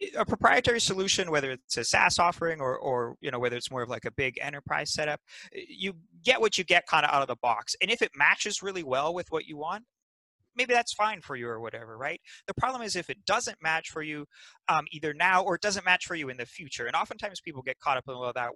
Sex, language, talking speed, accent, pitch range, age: male, English, 260 wpm, American, 130-180 Hz, 30-49